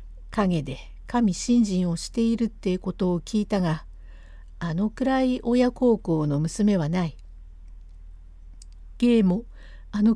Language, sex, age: Japanese, female, 60-79